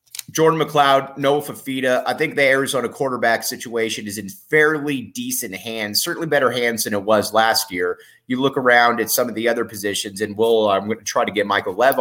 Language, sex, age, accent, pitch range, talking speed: English, male, 30-49, American, 105-130 Hz, 210 wpm